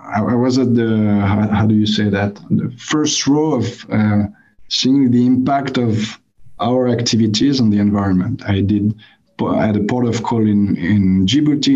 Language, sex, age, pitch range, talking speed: English, male, 50-69, 105-130 Hz, 175 wpm